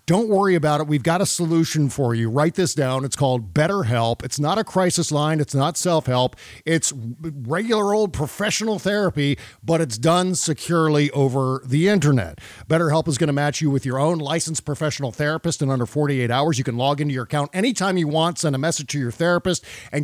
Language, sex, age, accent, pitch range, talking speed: English, male, 50-69, American, 135-170 Hz, 205 wpm